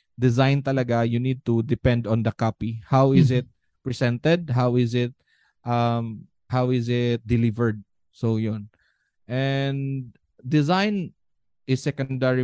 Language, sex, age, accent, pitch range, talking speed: Filipino, male, 20-39, native, 115-135 Hz, 130 wpm